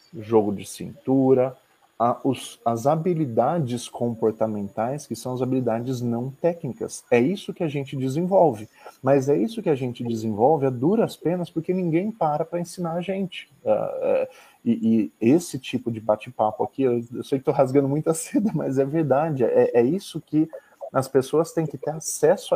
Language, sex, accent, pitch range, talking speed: Portuguese, male, Brazilian, 120-165 Hz, 160 wpm